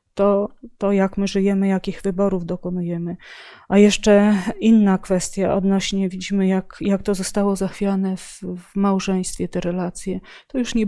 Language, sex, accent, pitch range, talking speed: Polish, female, native, 185-205 Hz, 150 wpm